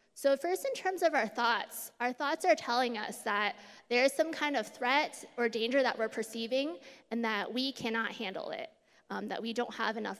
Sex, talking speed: female, 210 wpm